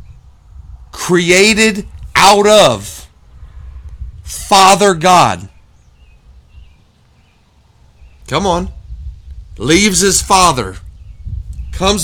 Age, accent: 50-69, American